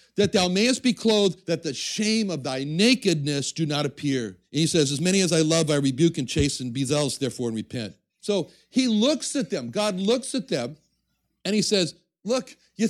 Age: 60-79